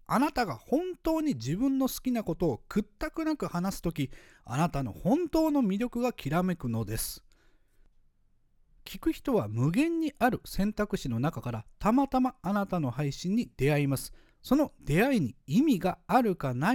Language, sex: Japanese, male